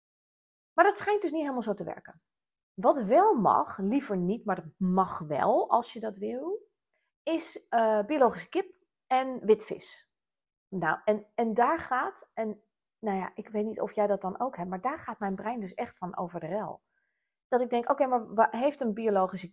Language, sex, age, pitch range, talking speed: Dutch, female, 30-49, 200-280 Hz, 200 wpm